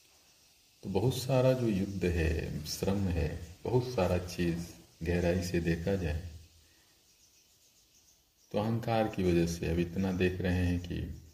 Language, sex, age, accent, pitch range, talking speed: Hindi, male, 40-59, native, 85-95 Hz, 140 wpm